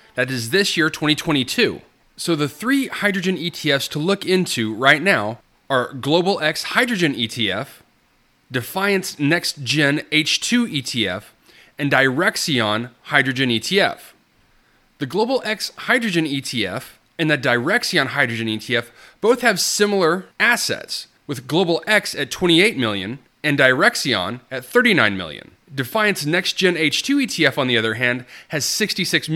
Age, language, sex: 30-49, English, male